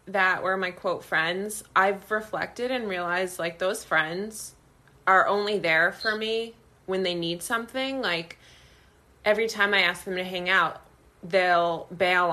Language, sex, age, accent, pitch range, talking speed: English, female, 20-39, American, 150-185 Hz, 155 wpm